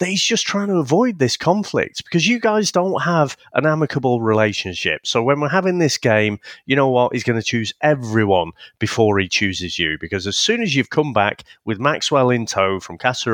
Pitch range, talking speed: 125-195 Hz, 205 wpm